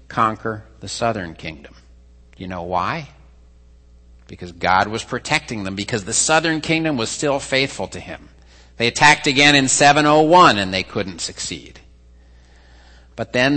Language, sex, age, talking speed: English, male, 50-69, 140 wpm